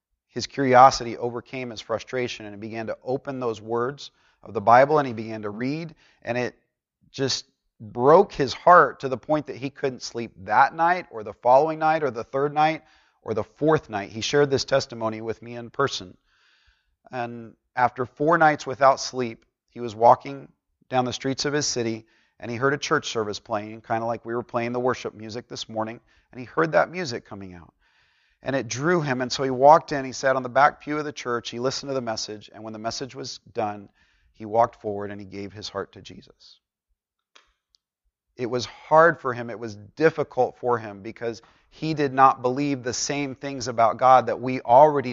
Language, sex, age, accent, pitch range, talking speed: English, male, 30-49, American, 115-135 Hz, 210 wpm